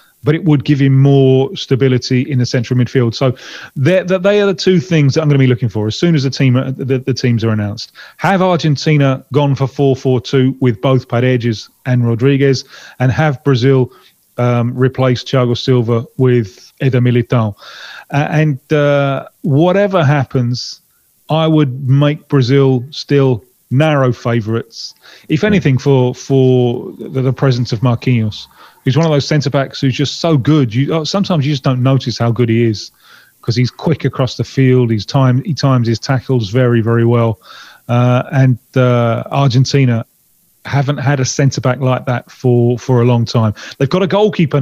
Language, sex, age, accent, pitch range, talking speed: English, male, 30-49, British, 120-145 Hz, 180 wpm